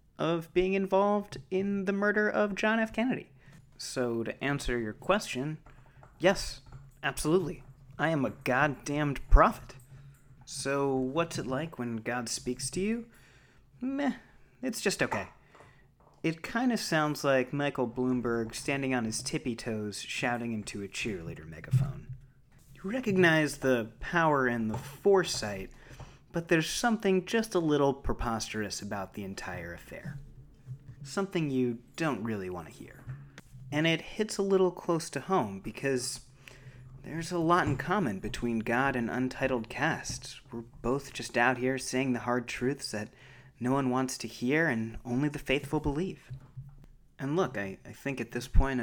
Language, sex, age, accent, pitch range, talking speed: English, male, 30-49, American, 125-155 Hz, 150 wpm